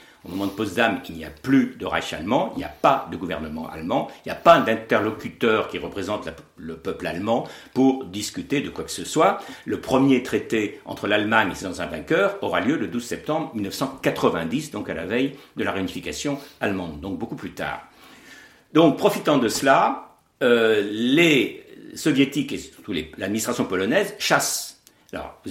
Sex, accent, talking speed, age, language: male, French, 175 wpm, 60-79, French